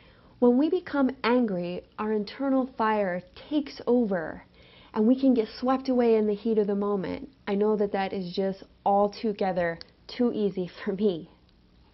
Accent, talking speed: American, 160 wpm